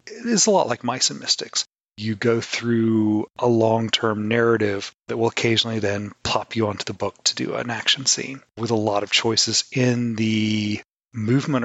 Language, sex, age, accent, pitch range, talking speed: English, male, 30-49, American, 105-120 Hz, 180 wpm